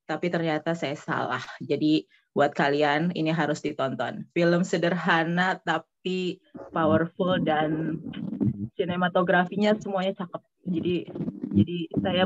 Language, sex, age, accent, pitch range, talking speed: Indonesian, female, 20-39, native, 150-185 Hz, 105 wpm